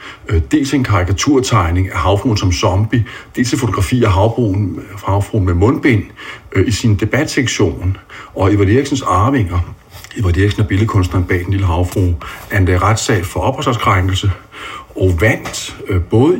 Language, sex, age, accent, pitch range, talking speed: Danish, male, 60-79, native, 90-115 Hz, 145 wpm